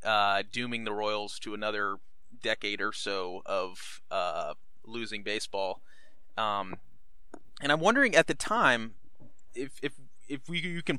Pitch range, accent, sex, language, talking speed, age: 105-130 Hz, American, male, English, 140 wpm, 20-39